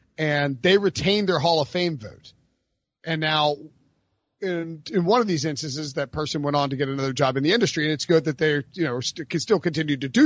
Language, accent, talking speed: English, American, 230 wpm